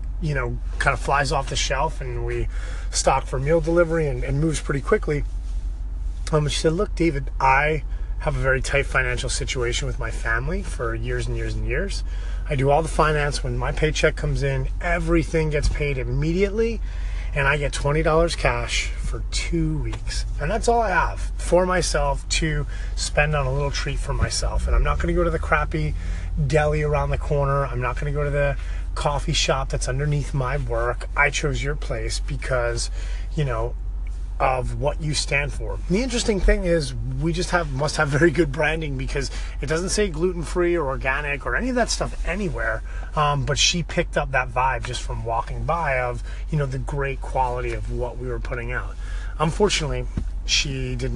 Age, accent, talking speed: 30-49, American, 195 wpm